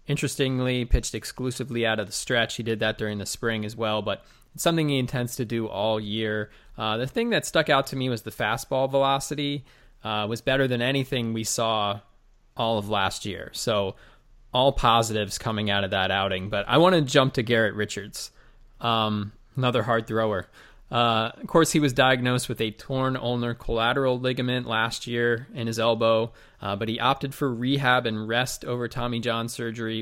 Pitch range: 110-130 Hz